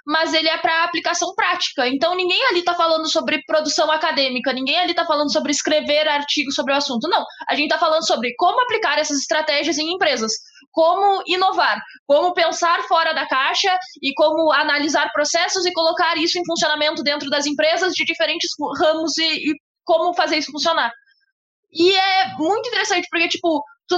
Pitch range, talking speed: 310-380 Hz, 180 wpm